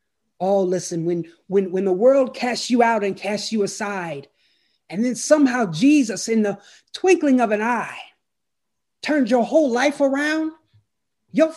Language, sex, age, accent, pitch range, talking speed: English, male, 30-49, American, 200-270 Hz, 155 wpm